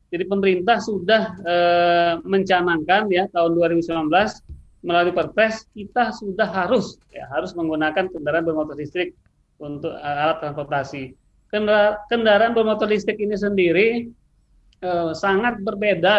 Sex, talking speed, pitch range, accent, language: male, 120 wpm, 165-210 Hz, native, Indonesian